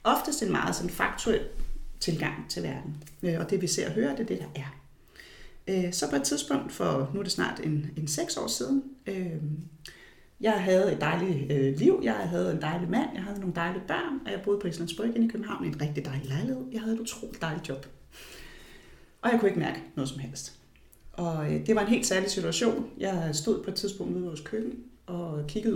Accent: native